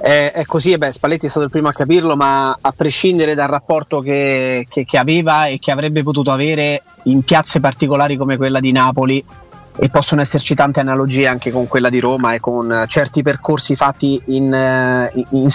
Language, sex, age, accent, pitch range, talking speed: Italian, male, 30-49, native, 125-150 Hz, 190 wpm